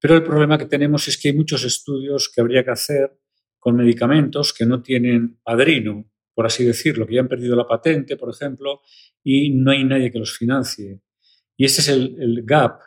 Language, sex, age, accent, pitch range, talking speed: Spanish, male, 40-59, Spanish, 115-135 Hz, 205 wpm